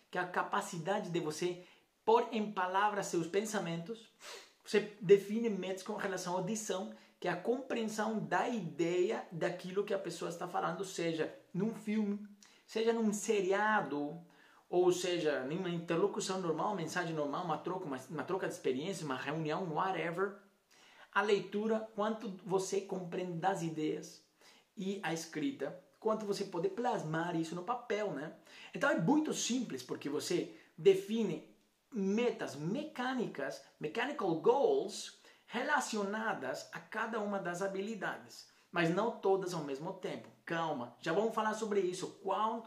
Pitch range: 170-215 Hz